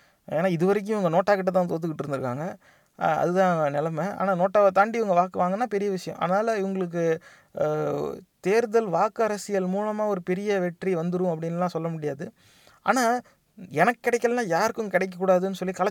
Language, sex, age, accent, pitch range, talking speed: Tamil, male, 30-49, native, 170-210 Hz, 135 wpm